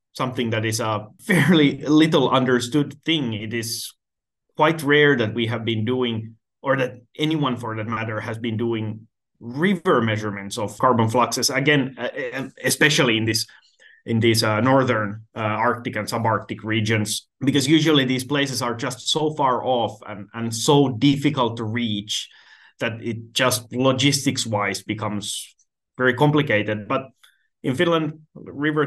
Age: 30-49